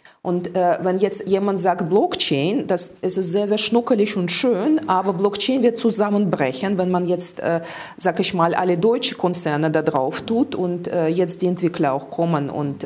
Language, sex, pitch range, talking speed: German, female, 170-205 Hz, 180 wpm